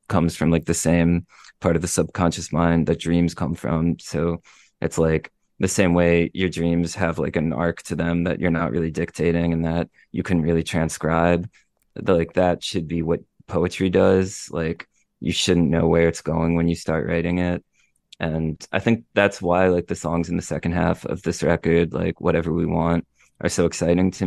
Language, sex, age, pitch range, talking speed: English, male, 20-39, 85-90 Hz, 200 wpm